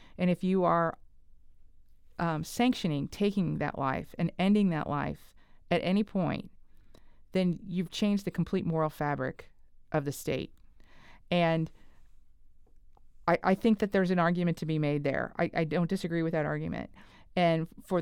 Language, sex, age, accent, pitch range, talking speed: English, female, 40-59, American, 160-195 Hz, 155 wpm